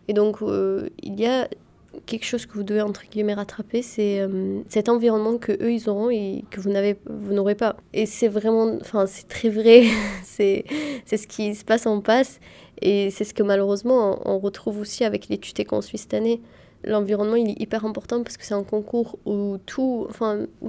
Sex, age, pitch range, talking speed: female, 20-39, 205-230 Hz, 205 wpm